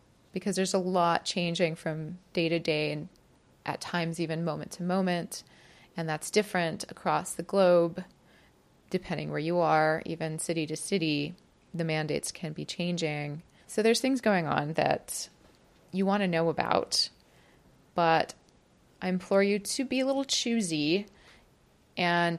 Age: 30-49